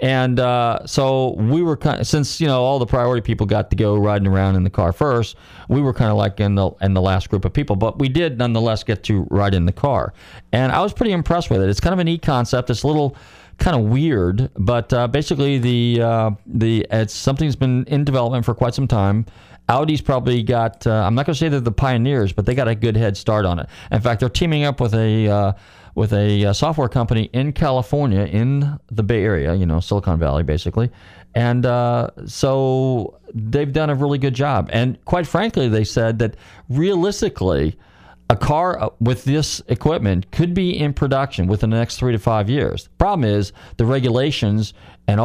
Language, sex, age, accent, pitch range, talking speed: English, male, 40-59, American, 100-135 Hz, 215 wpm